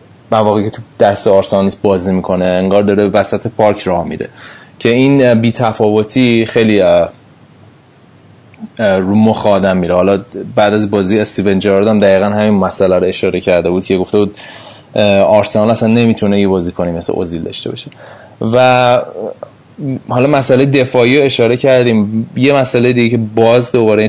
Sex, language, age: male, Persian, 20-39